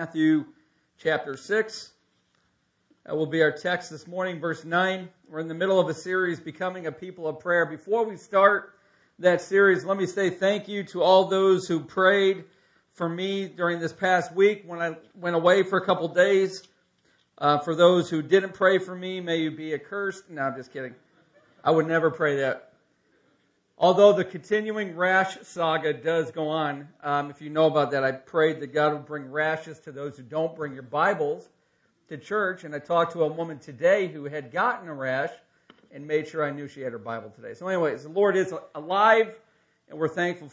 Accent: American